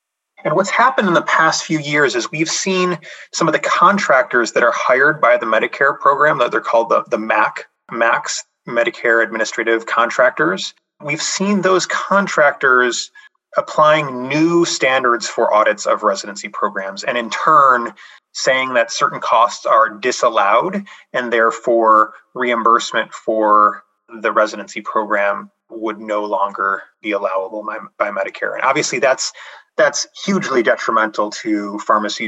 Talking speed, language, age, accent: 140 wpm, English, 30-49, American